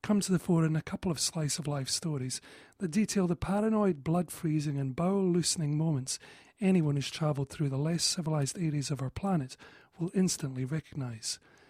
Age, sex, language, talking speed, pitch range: 40-59, male, English, 185 wpm, 145-190 Hz